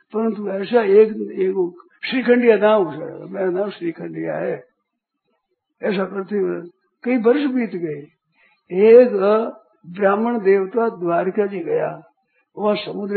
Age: 60-79